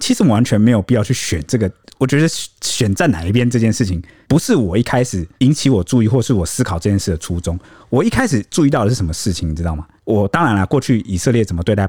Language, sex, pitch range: Chinese, male, 95-125 Hz